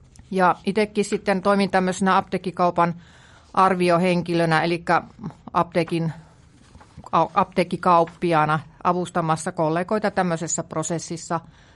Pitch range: 165-195 Hz